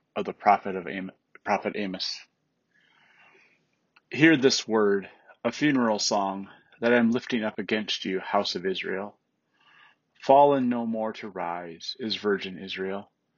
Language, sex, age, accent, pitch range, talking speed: English, male, 30-49, American, 100-125 Hz, 140 wpm